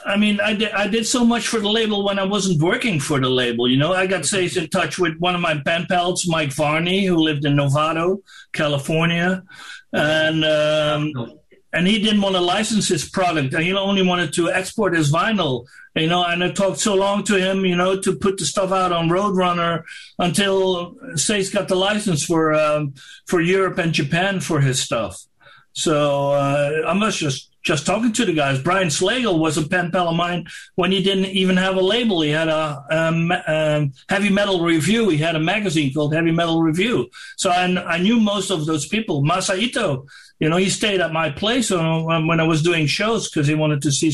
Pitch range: 155-190 Hz